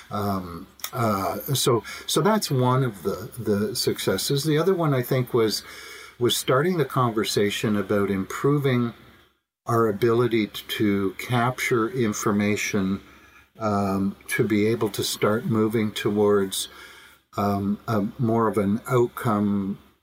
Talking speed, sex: 125 wpm, male